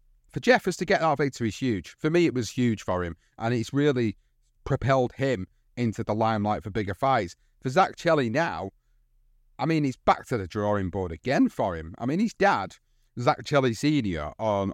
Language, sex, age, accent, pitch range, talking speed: English, male, 30-49, British, 110-140 Hz, 200 wpm